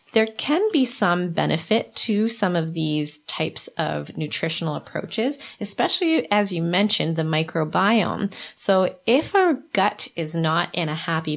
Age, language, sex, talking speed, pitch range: 20-39, English, female, 150 wpm, 165-225 Hz